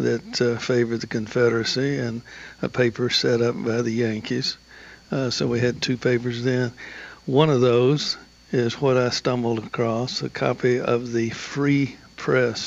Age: 60-79